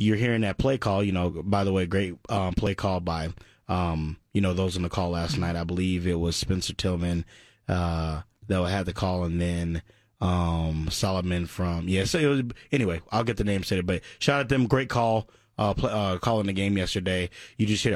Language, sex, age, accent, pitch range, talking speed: English, male, 20-39, American, 95-120 Hz, 225 wpm